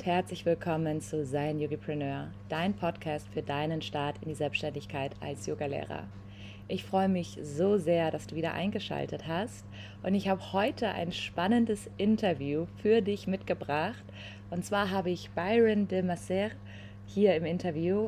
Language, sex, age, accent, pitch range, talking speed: German, female, 20-39, German, 140-195 Hz, 150 wpm